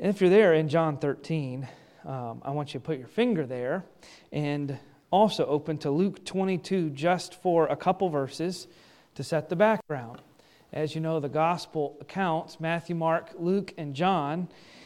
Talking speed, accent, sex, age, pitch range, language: 165 wpm, American, male, 40-59, 150-180 Hz, English